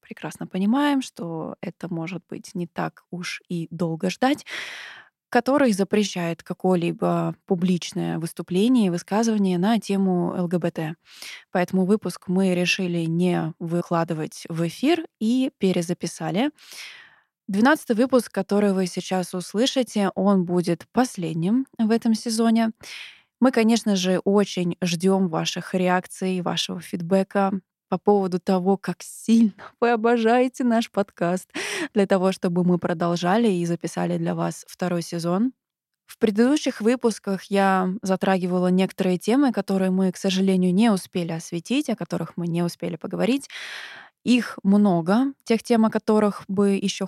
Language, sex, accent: Russian, female, native